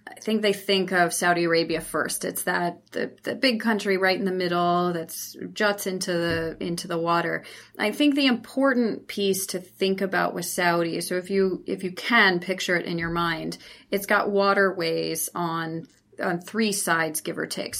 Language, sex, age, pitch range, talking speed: English, female, 30-49, 170-200 Hz, 190 wpm